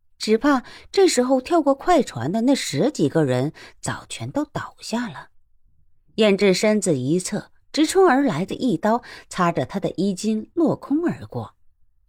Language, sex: Chinese, female